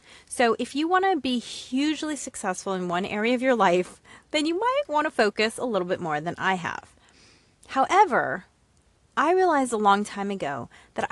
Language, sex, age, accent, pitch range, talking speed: English, female, 30-49, American, 190-265 Hz, 190 wpm